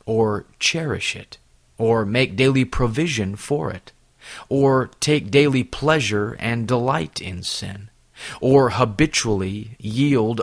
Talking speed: 115 wpm